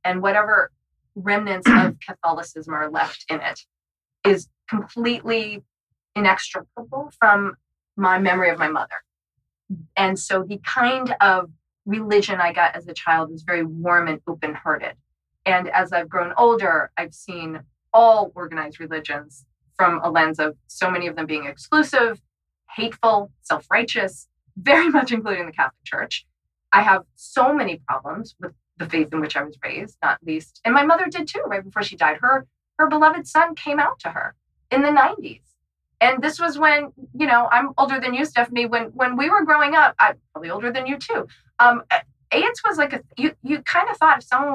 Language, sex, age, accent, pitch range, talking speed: English, female, 20-39, American, 170-260 Hz, 180 wpm